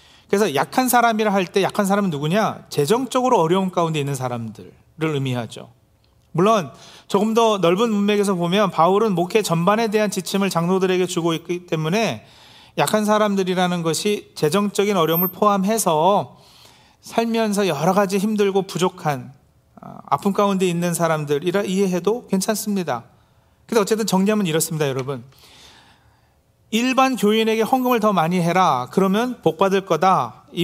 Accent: native